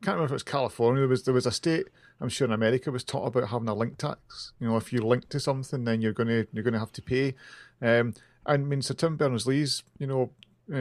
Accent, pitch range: British, 115-140 Hz